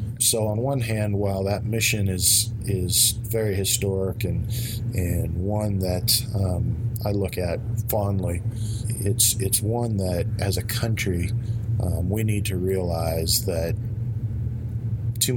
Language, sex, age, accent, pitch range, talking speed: English, male, 40-59, American, 95-115 Hz, 135 wpm